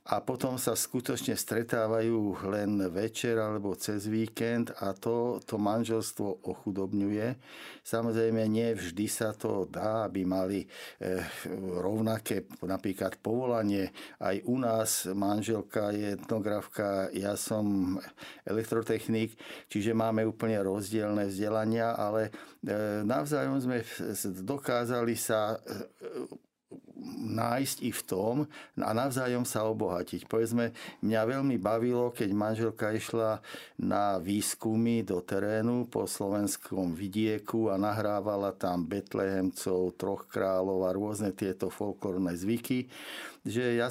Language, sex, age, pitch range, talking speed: Slovak, male, 60-79, 100-115 Hz, 115 wpm